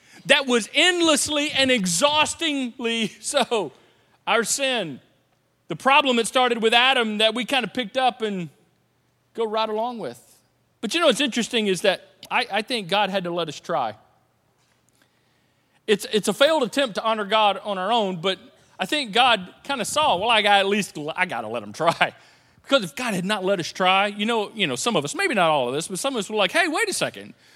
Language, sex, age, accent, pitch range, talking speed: English, male, 40-59, American, 175-270 Hz, 220 wpm